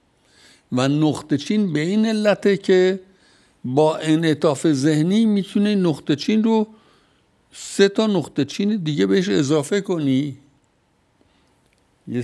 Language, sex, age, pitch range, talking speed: Persian, male, 60-79, 125-175 Hz, 115 wpm